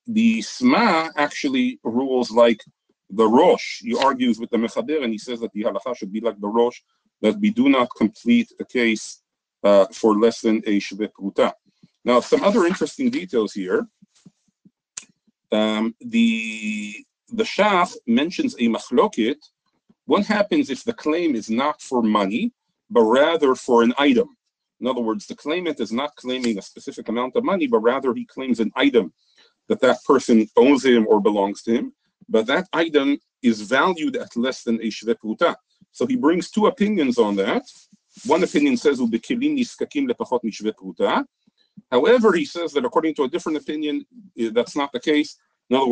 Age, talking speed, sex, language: 40-59, 165 wpm, male, English